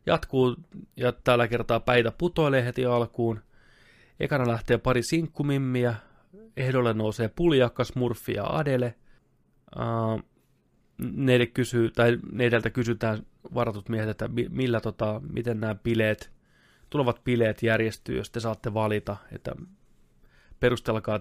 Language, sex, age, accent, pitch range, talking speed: Finnish, male, 20-39, native, 110-125 Hz, 110 wpm